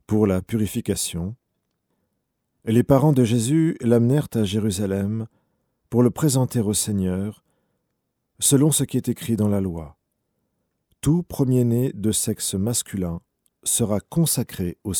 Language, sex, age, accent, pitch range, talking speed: French, male, 40-59, French, 100-125 Hz, 125 wpm